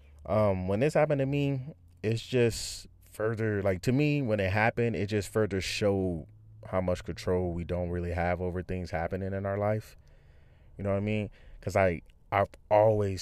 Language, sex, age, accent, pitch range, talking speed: English, male, 20-39, American, 90-105 Hz, 185 wpm